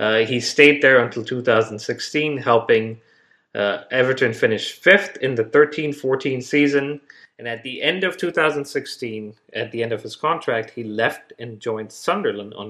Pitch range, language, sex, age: 115-150 Hz, English, male, 30-49